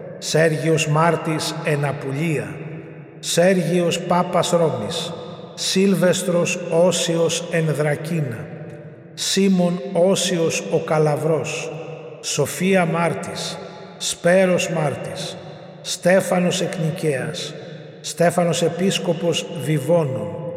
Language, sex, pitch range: Greek, male, 155-175 Hz